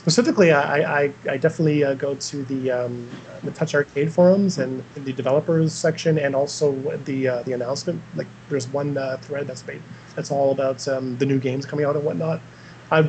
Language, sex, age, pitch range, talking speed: English, male, 30-49, 130-160 Hz, 200 wpm